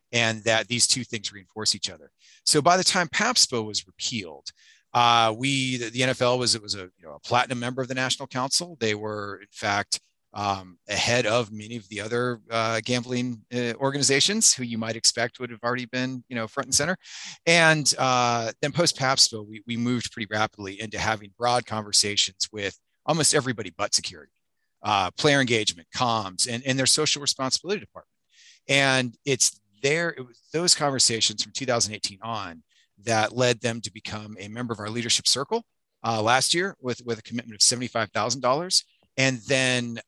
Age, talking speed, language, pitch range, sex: 30-49, 185 wpm, English, 105-125 Hz, male